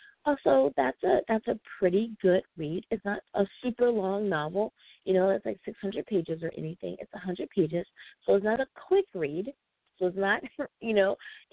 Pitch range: 175-220 Hz